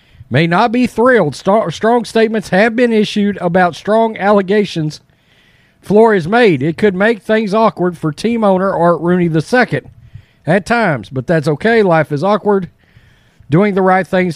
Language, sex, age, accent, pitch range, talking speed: English, male, 40-59, American, 155-220 Hz, 155 wpm